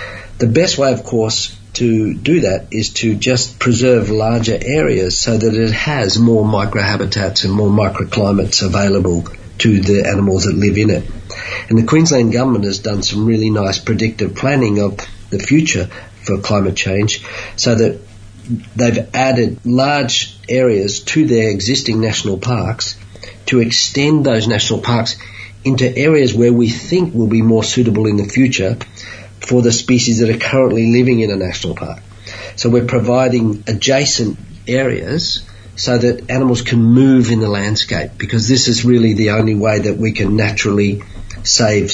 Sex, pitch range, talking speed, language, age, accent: male, 100-120 Hz, 160 wpm, English, 50-69, Australian